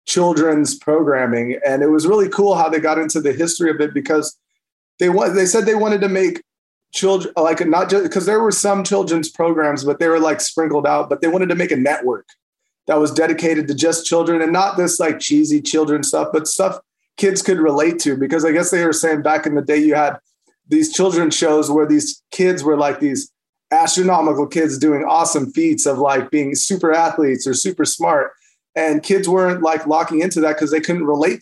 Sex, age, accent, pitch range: male, 30-49, American, 145-180 Hz